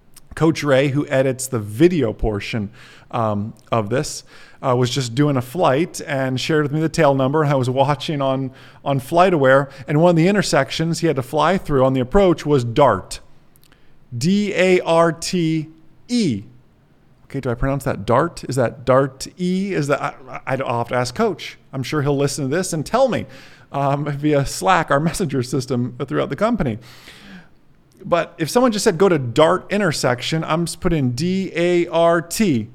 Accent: American